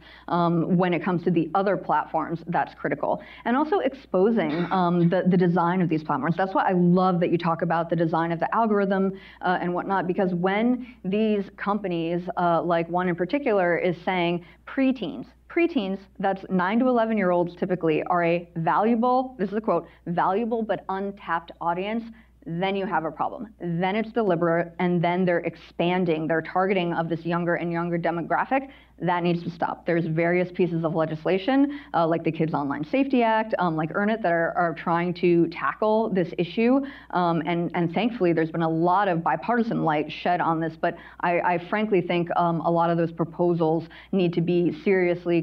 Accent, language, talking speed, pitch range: American, English, 190 wpm, 170-195 Hz